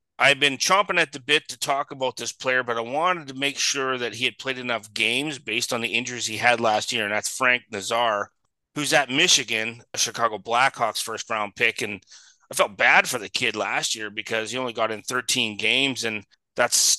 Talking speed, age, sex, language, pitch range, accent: 220 wpm, 30-49, male, English, 110-135 Hz, American